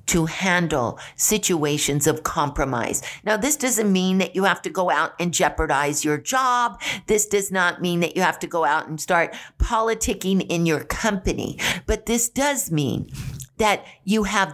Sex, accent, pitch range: female, American, 160-205 Hz